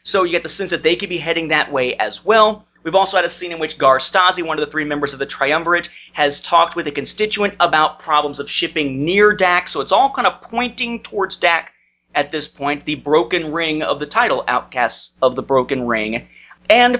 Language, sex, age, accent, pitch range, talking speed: English, male, 30-49, American, 155-215 Hz, 225 wpm